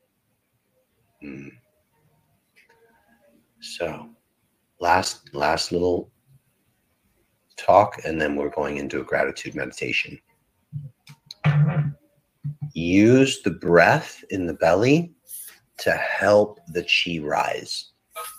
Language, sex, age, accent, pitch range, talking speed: English, male, 30-49, American, 90-130 Hz, 80 wpm